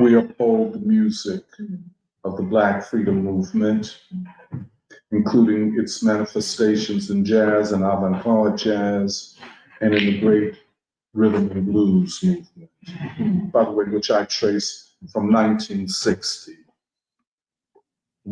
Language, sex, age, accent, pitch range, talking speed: English, male, 50-69, American, 105-140 Hz, 110 wpm